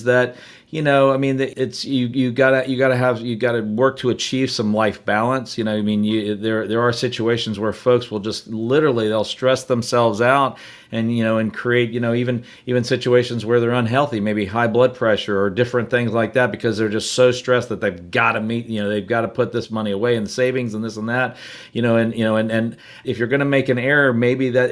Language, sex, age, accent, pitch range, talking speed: English, male, 40-59, American, 110-130 Hz, 245 wpm